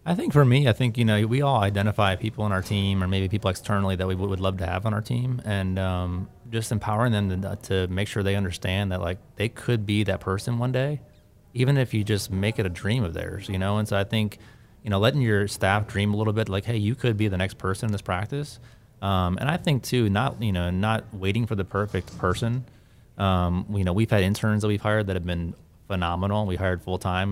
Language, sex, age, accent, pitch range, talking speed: English, male, 30-49, American, 95-110 Hz, 250 wpm